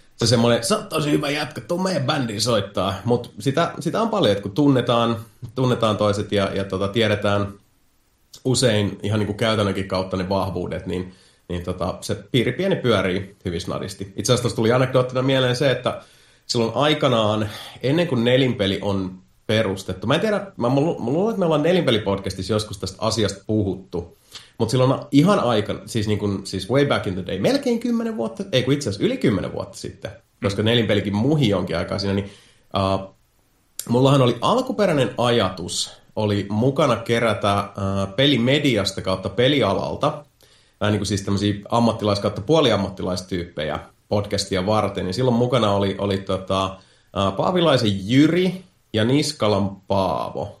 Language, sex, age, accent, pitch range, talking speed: Finnish, male, 30-49, native, 100-130 Hz, 155 wpm